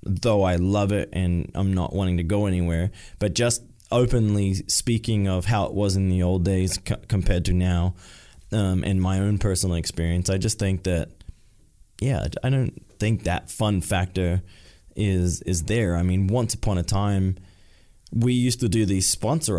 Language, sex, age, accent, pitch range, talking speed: English, male, 20-39, American, 90-105 Hz, 180 wpm